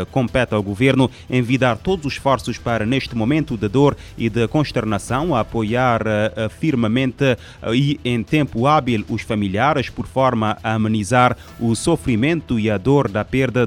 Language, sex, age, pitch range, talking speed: Portuguese, male, 30-49, 110-130 Hz, 150 wpm